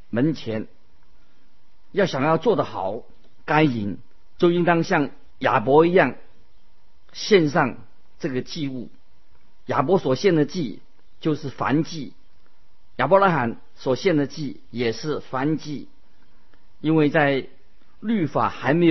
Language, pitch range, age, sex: Chinese, 115-160 Hz, 50-69, male